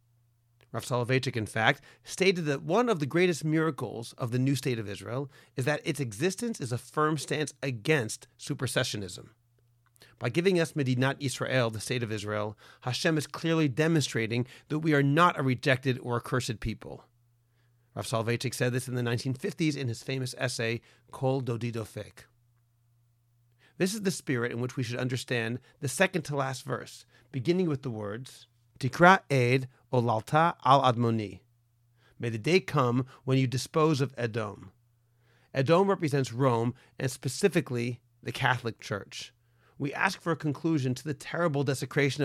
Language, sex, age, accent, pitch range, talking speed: English, male, 40-59, American, 120-145 Hz, 150 wpm